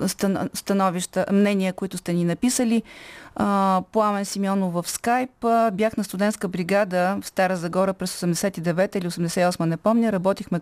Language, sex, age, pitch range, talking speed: Bulgarian, female, 30-49, 175-215 Hz, 135 wpm